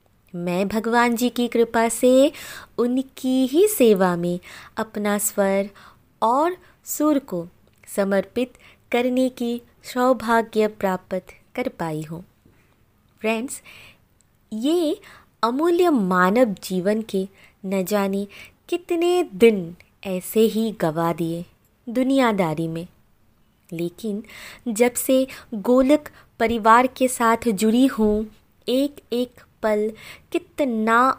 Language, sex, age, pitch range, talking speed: Hindi, female, 20-39, 185-255 Hz, 100 wpm